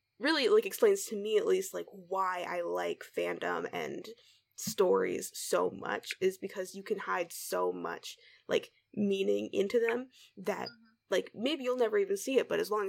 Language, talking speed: English, 175 wpm